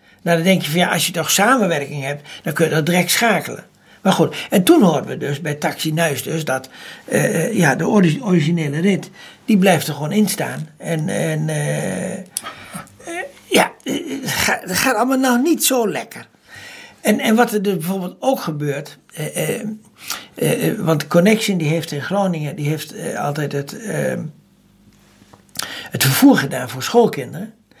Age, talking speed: 60-79, 175 wpm